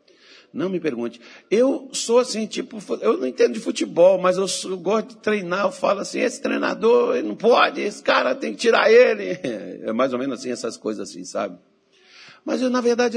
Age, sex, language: 60-79, male, Portuguese